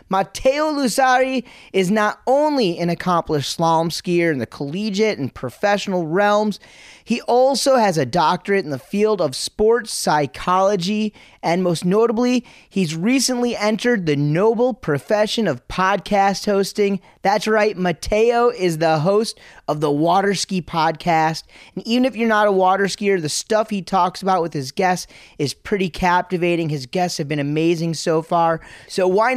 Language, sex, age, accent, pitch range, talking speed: English, male, 30-49, American, 170-215 Hz, 155 wpm